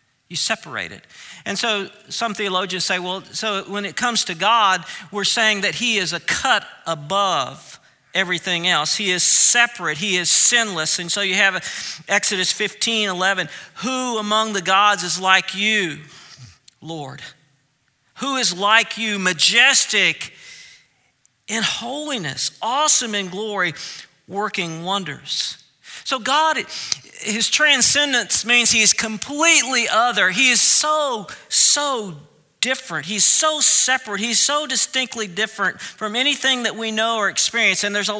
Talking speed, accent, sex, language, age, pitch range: 140 wpm, American, male, English, 50-69, 185-245 Hz